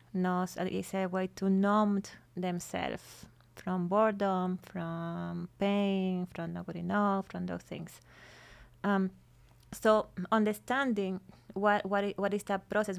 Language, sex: English, female